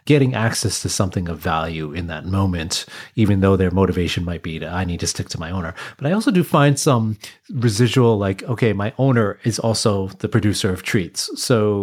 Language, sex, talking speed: English, male, 210 wpm